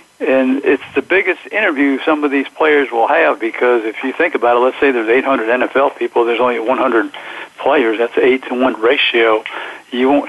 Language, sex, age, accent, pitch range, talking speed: English, male, 60-79, American, 120-135 Hz, 190 wpm